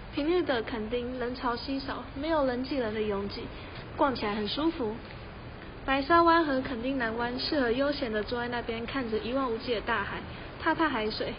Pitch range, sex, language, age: 230-285 Hz, female, Chinese, 20-39